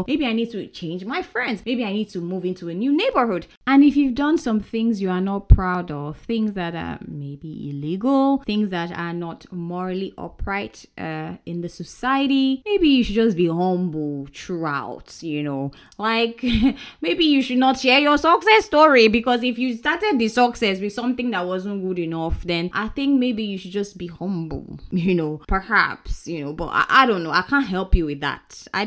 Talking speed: 205 wpm